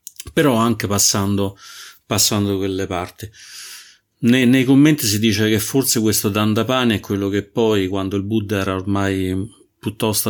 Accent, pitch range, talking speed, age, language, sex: native, 100-115 Hz, 145 wpm, 30-49, Italian, male